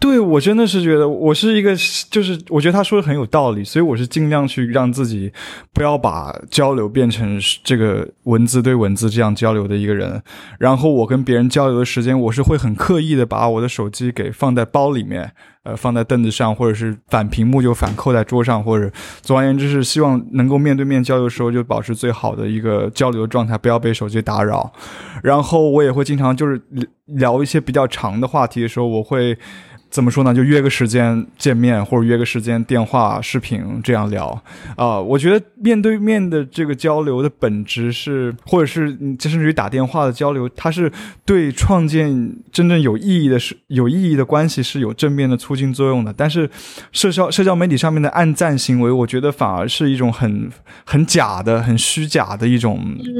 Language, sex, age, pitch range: Chinese, male, 20-39, 115-150 Hz